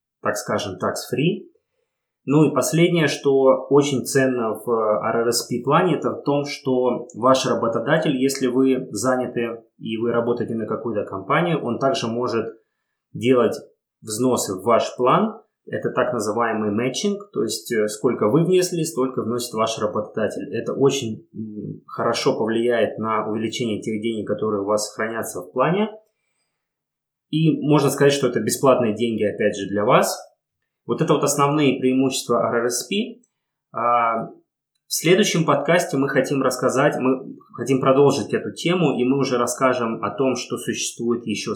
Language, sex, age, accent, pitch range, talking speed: Russian, male, 20-39, native, 115-145 Hz, 140 wpm